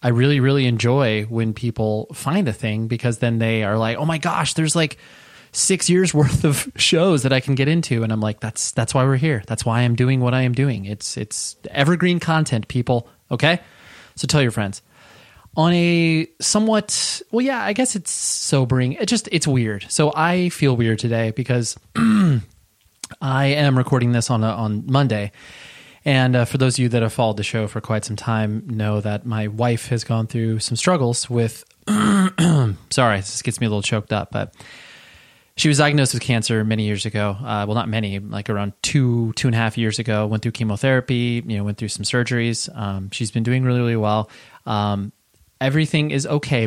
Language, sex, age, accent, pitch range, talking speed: English, male, 20-39, American, 110-140 Hz, 200 wpm